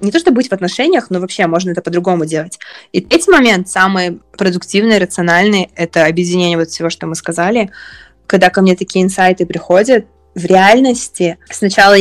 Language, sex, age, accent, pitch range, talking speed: Russian, female, 20-39, native, 175-230 Hz, 170 wpm